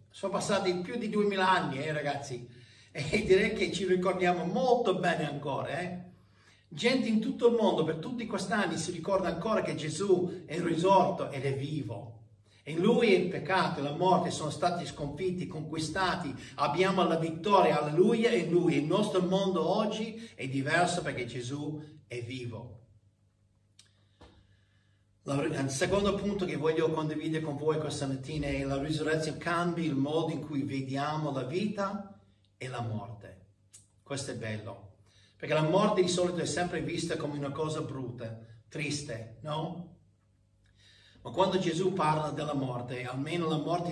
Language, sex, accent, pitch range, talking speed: Italian, male, native, 125-180 Hz, 155 wpm